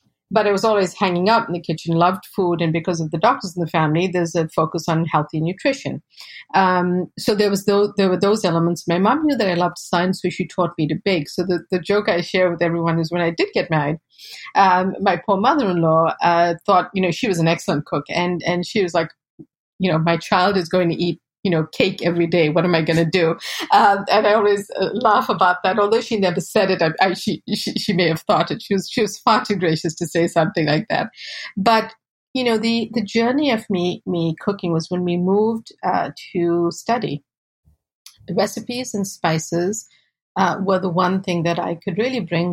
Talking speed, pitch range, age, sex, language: 225 wpm, 170-205 Hz, 30-49, female, English